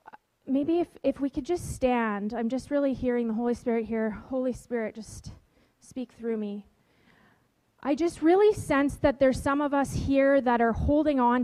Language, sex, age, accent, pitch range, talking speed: English, female, 30-49, American, 240-285 Hz, 185 wpm